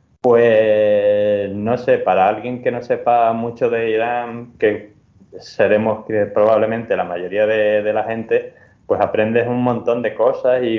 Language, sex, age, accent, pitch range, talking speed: Spanish, male, 20-39, Spanish, 110-135 Hz, 150 wpm